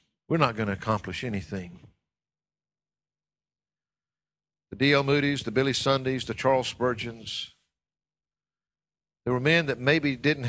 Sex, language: male, English